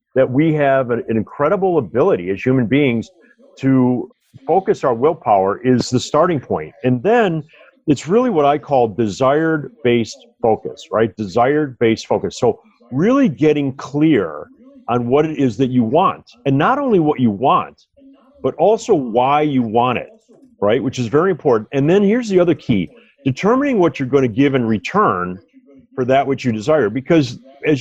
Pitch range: 125-170 Hz